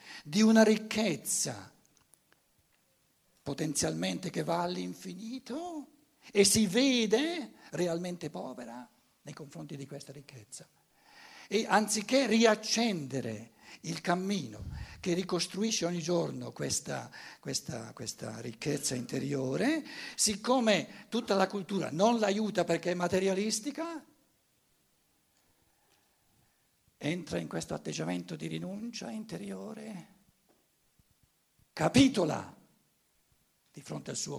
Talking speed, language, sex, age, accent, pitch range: 90 wpm, Italian, male, 60-79, native, 140-215 Hz